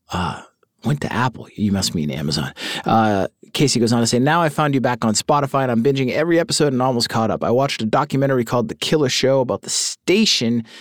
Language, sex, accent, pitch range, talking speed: English, male, American, 110-150 Hz, 230 wpm